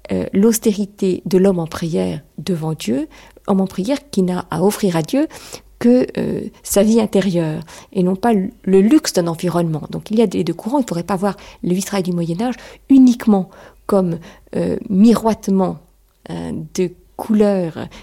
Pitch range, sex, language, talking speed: 180-235 Hz, female, French, 175 wpm